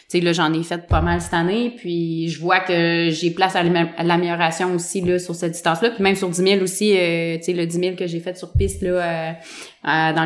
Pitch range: 165-190 Hz